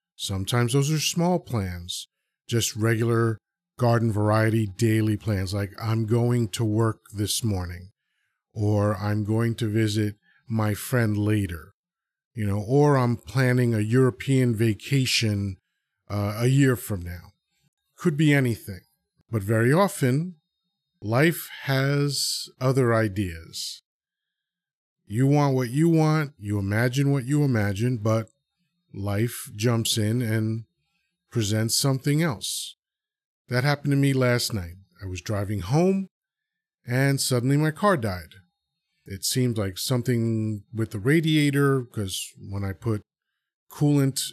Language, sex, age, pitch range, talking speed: English, male, 40-59, 105-140 Hz, 125 wpm